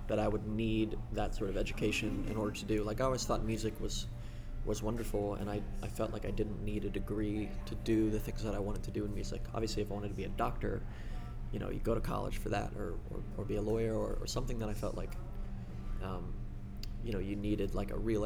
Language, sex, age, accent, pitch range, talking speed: English, male, 20-39, American, 105-115 Hz, 255 wpm